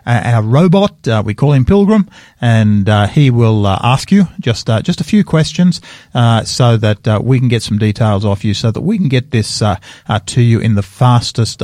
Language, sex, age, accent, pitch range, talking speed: English, male, 50-69, Australian, 110-145 Hz, 220 wpm